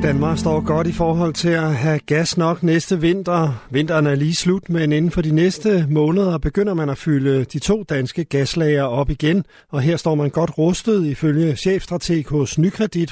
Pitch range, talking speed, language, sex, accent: 145-180 Hz, 190 wpm, Danish, male, native